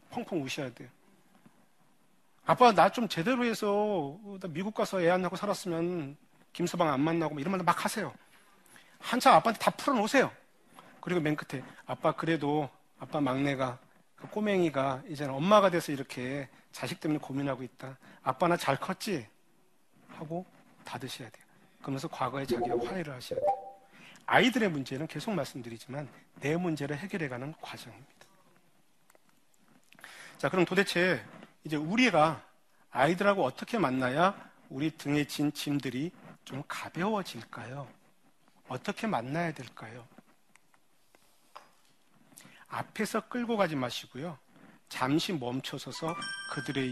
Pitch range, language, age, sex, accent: 140-195 Hz, Korean, 40-59, male, native